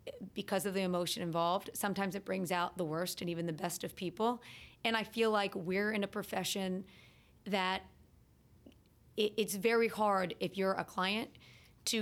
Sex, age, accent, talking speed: female, 40-59, American, 170 wpm